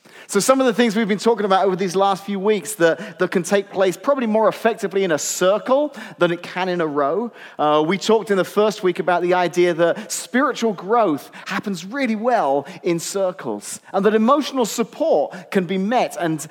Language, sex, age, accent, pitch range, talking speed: English, male, 30-49, British, 170-220 Hz, 205 wpm